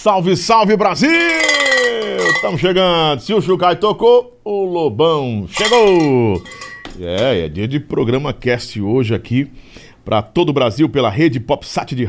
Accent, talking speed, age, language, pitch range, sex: Brazilian, 145 wpm, 50-69, Portuguese, 115-150 Hz, male